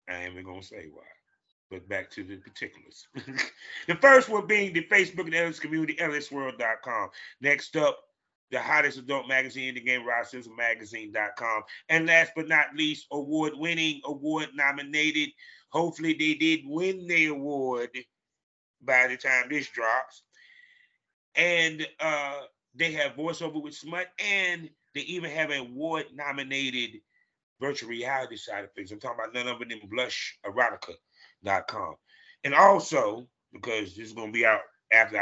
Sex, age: male, 30-49